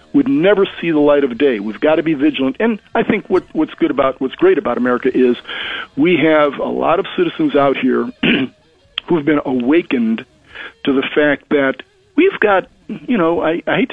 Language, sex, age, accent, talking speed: English, male, 50-69, American, 205 wpm